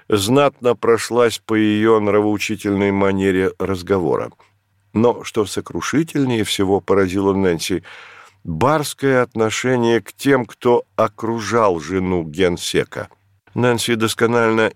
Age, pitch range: 50-69, 100-115 Hz